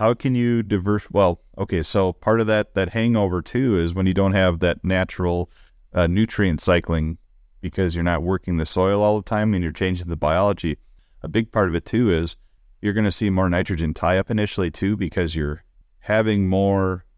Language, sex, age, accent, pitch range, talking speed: English, male, 30-49, American, 85-100 Hz, 205 wpm